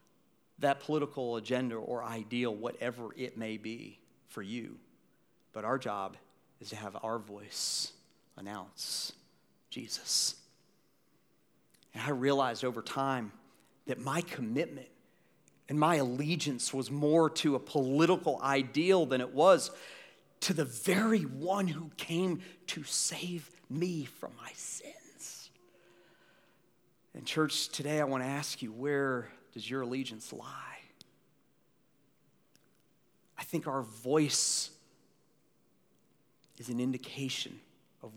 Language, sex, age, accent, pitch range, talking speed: English, male, 40-59, American, 120-155 Hz, 115 wpm